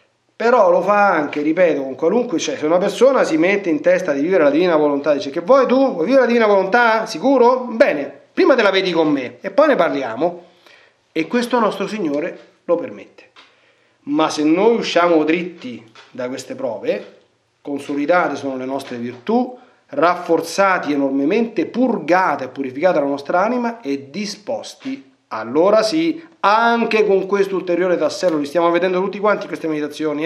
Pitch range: 155-210 Hz